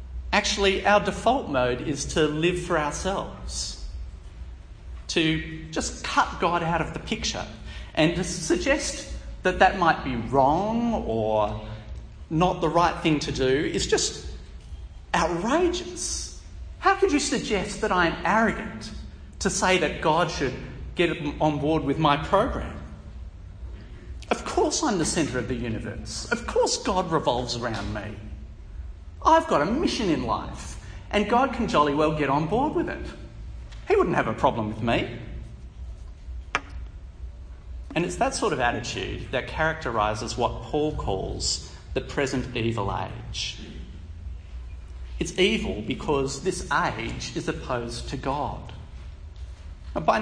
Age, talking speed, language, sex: 40-59, 140 wpm, English, male